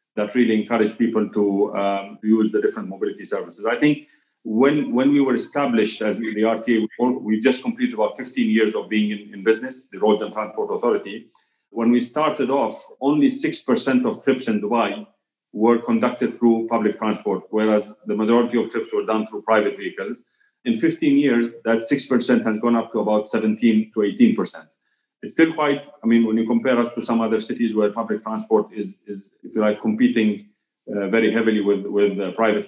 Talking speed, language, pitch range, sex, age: 190 wpm, English, 110-140 Hz, male, 40-59